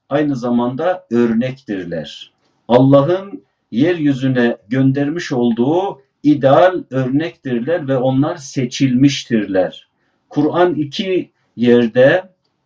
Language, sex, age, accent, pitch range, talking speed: Turkish, male, 50-69, native, 125-155 Hz, 70 wpm